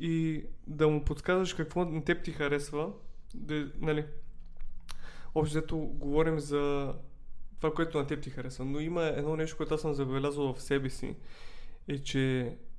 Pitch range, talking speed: 140-165 Hz, 150 wpm